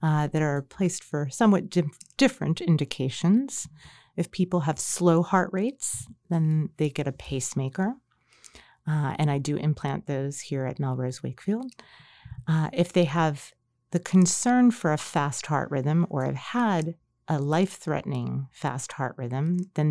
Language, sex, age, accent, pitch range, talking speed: English, female, 30-49, American, 140-175 Hz, 150 wpm